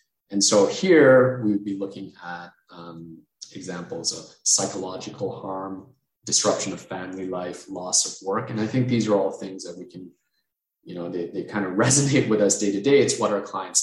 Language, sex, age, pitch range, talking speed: English, male, 20-39, 100-125 Hz, 200 wpm